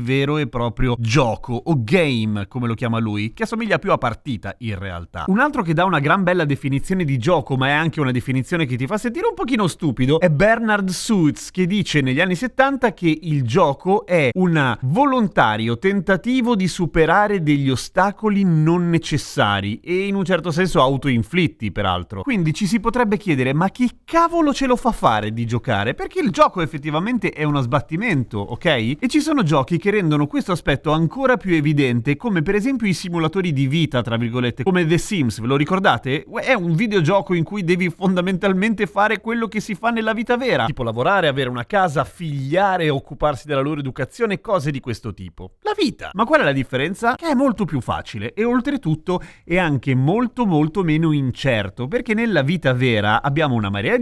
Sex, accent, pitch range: male, native, 135-200 Hz